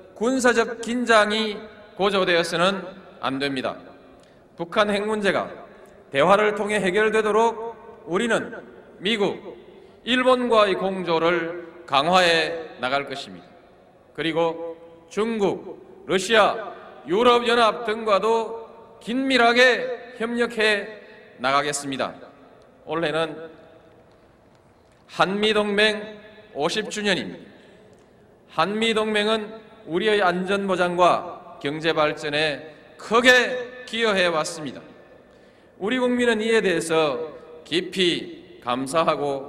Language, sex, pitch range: Korean, male, 165-220 Hz